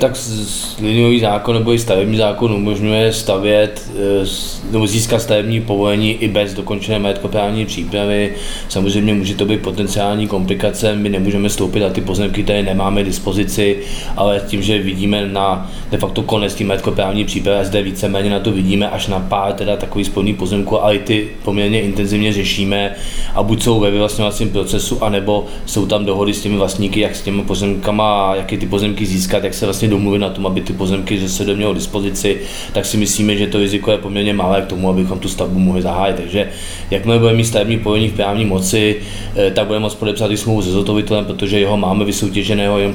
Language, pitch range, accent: Czech, 95-105 Hz, native